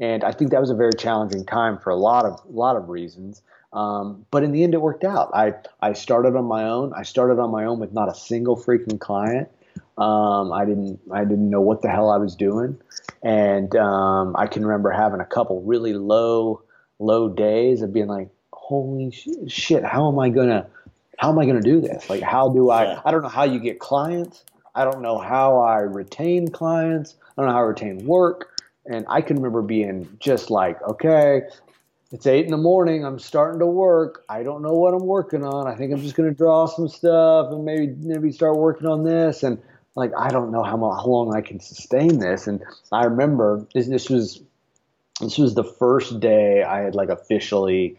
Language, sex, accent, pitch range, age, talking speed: English, male, American, 105-145 Hz, 30-49, 220 wpm